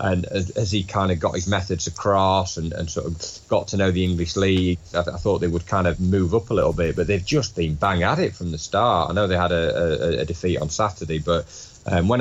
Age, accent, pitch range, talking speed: 30-49, British, 85-100 Hz, 270 wpm